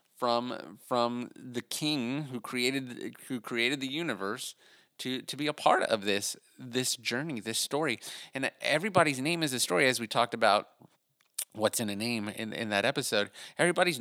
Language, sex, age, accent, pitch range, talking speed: English, male, 30-49, American, 110-135 Hz, 170 wpm